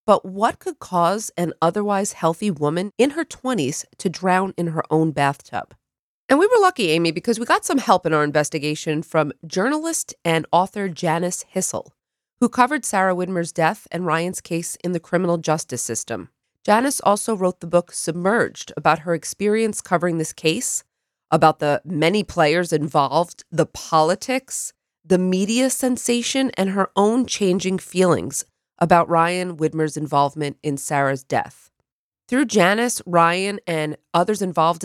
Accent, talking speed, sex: American, 155 wpm, female